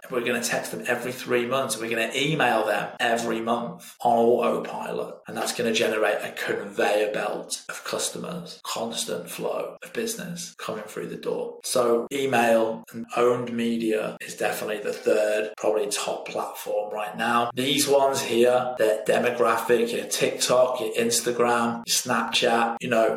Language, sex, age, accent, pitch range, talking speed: English, male, 20-39, British, 110-140 Hz, 160 wpm